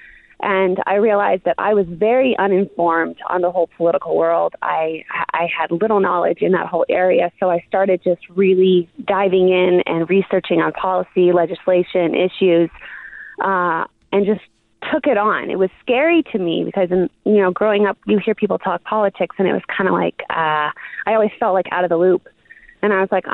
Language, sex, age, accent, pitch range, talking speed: English, female, 20-39, American, 180-215 Hz, 195 wpm